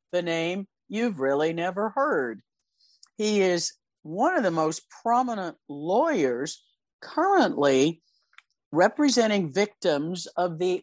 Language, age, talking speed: English, 60-79, 105 wpm